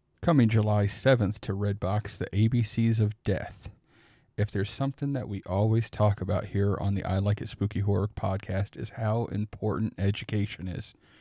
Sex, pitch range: male, 100-115 Hz